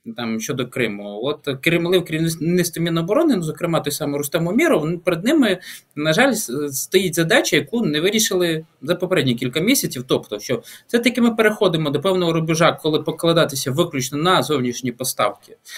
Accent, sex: native, male